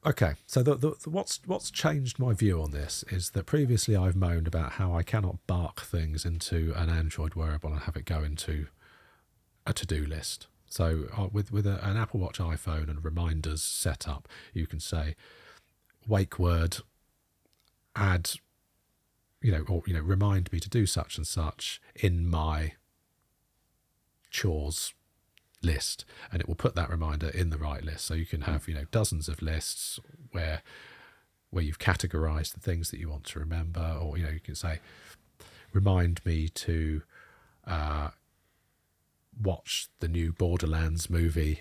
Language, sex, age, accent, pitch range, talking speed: English, male, 40-59, British, 80-100 Hz, 160 wpm